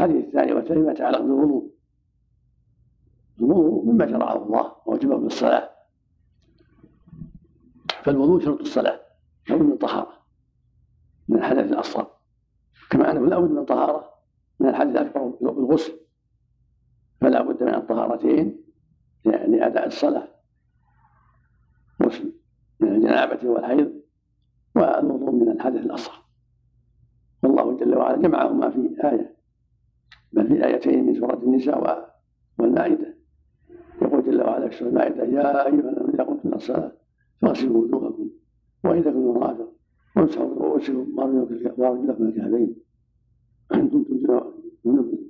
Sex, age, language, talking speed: male, 60-79, Arabic, 110 wpm